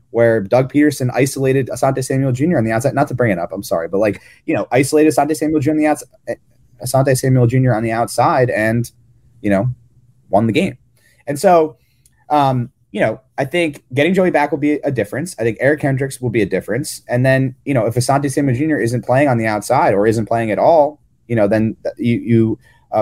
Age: 30-49